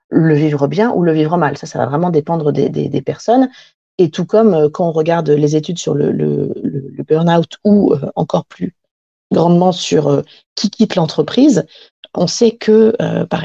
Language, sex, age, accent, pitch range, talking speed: French, female, 40-59, French, 150-220 Hz, 205 wpm